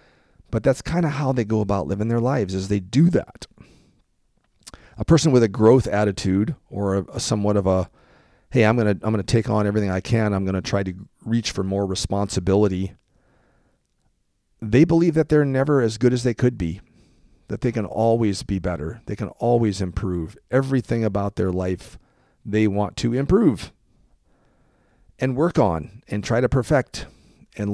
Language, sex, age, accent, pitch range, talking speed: English, male, 40-59, American, 95-125 Hz, 185 wpm